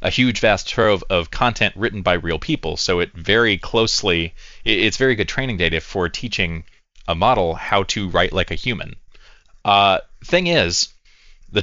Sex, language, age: male, English, 20-39